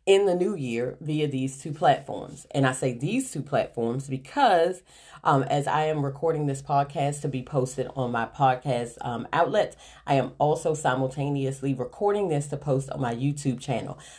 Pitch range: 130-160 Hz